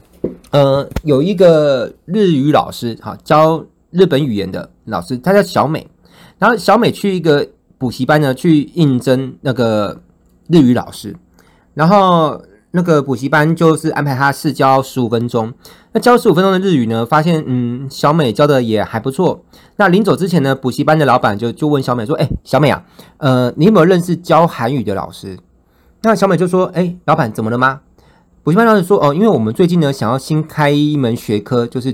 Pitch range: 120-185 Hz